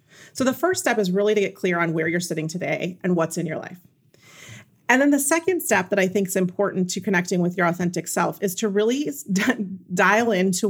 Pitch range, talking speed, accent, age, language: 175-215 Hz, 225 wpm, American, 30-49, English